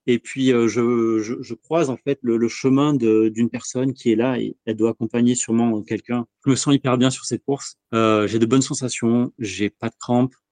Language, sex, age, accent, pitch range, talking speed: French, male, 30-49, French, 110-130 Hz, 230 wpm